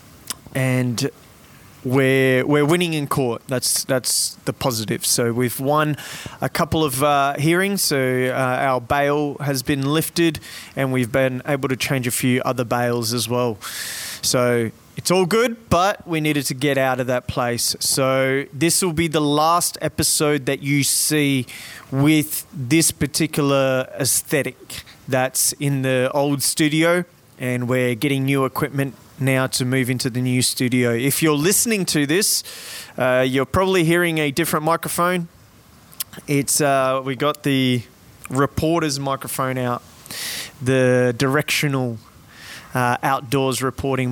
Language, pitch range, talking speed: English, 125-155 Hz, 145 wpm